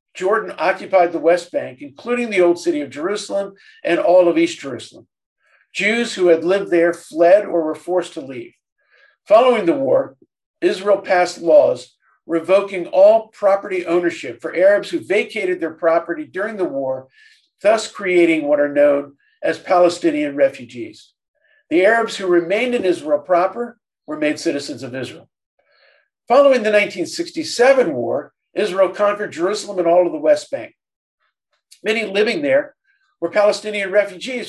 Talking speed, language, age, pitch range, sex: 150 wpm, English, 50-69, 175-270 Hz, male